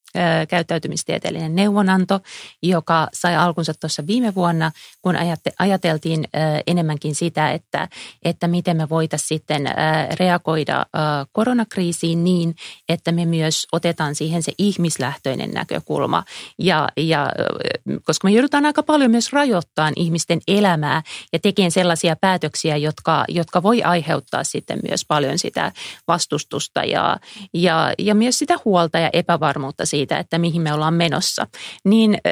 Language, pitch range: Finnish, 160-195 Hz